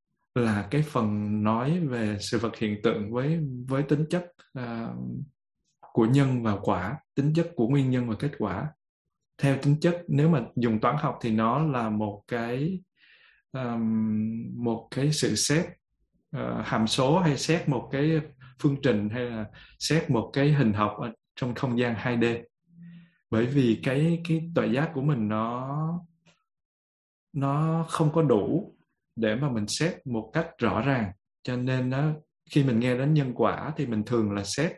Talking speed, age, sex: 170 wpm, 20-39, male